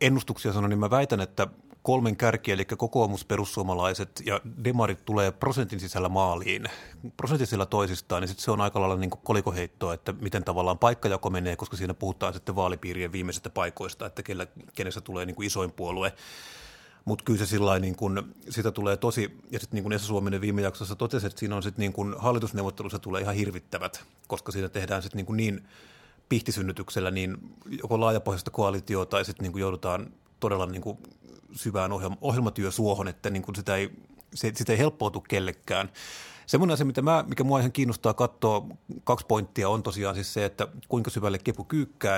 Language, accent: Finnish, native